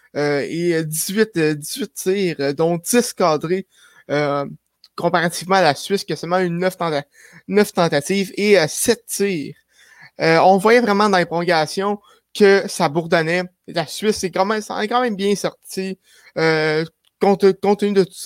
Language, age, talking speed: French, 20-39, 170 wpm